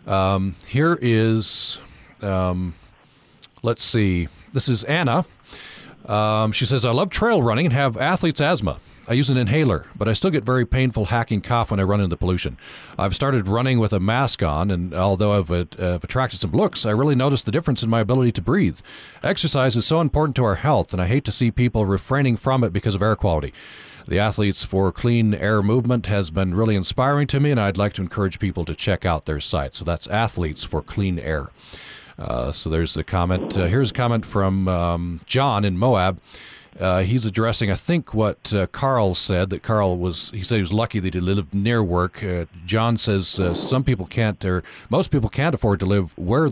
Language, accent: English, American